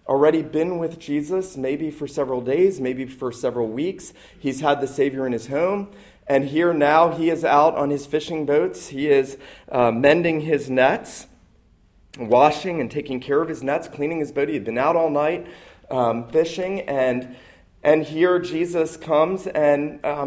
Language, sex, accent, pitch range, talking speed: English, male, American, 105-150 Hz, 180 wpm